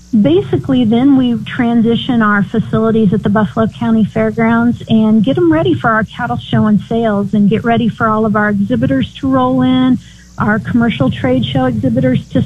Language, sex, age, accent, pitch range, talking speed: English, female, 40-59, American, 210-240 Hz, 185 wpm